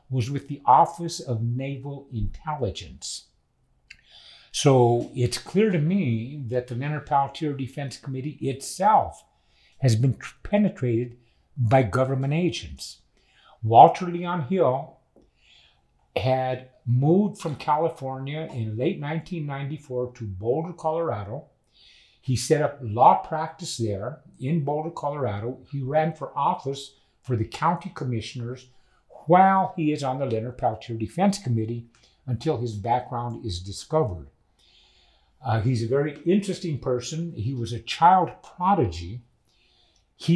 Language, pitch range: English, 120-160 Hz